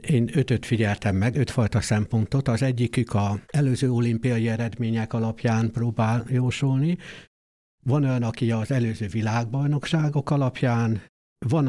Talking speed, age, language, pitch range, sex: 120 wpm, 60-79, Hungarian, 115-145 Hz, male